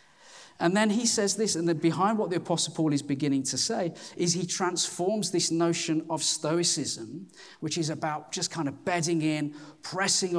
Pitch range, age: 155-200 Hz, 40-59